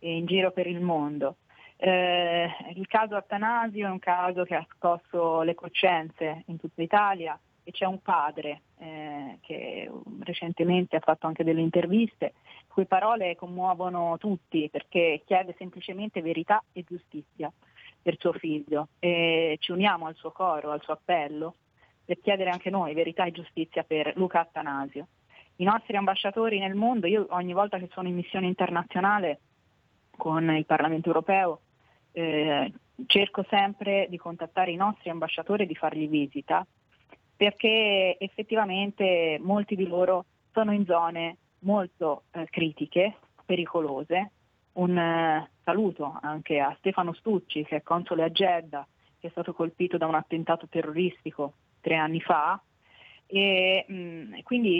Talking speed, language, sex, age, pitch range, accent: 145 wpm, Italian, female, 30-49, 160-190 Hz, native